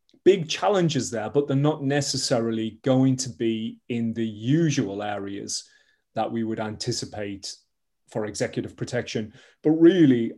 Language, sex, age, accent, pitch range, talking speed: English, male, 30-49, British, 110-135 Hz, 135 wpm